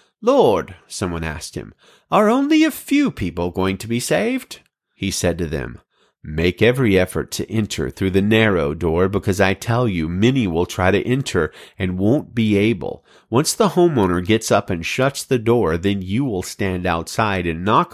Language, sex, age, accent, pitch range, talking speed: English, male, 40-59, American, 85-120 Hz, 185 wpm